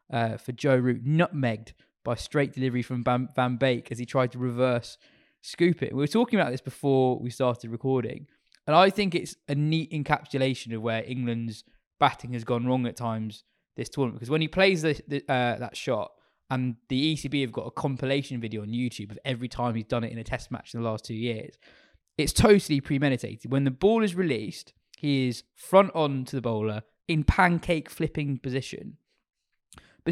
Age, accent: 20-39, British